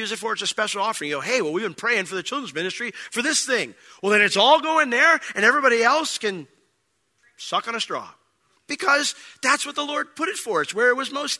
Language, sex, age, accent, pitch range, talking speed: English, male, 40-59, American, 130-215 Hz, 255 wpm